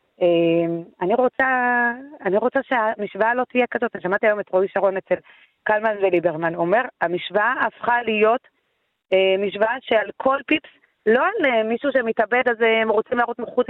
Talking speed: 175 wpm